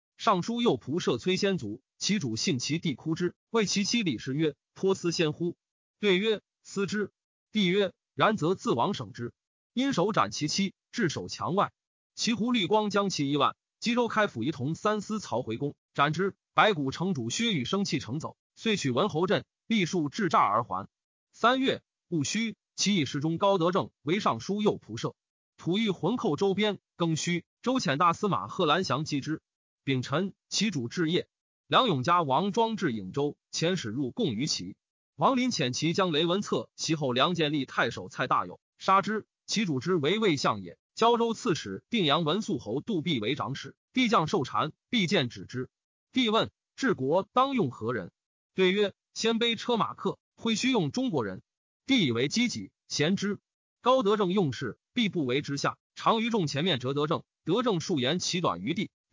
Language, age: Chinese, 30-49